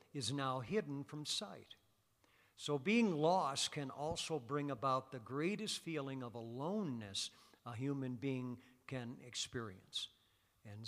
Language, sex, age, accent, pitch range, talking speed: English, male, 50-69, American, 120-145 Hz, 125 wpm